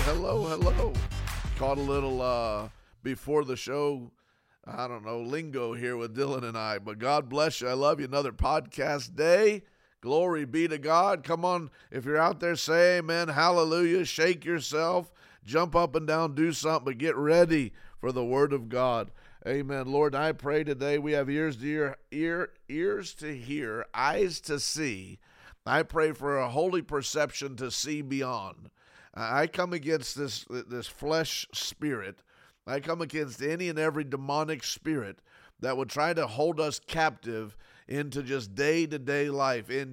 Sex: male